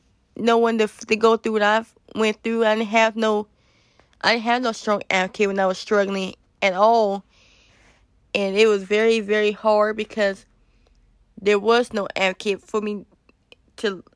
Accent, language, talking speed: American, English, 155 wpm